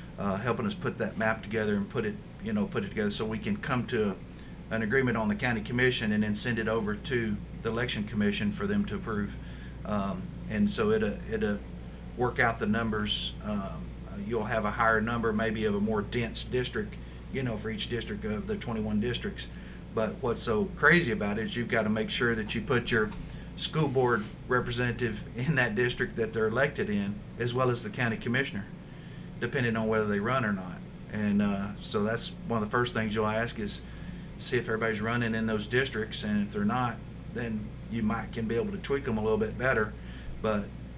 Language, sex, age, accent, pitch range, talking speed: English, male, 50-69, American, 105-125 Hz, 210 wpm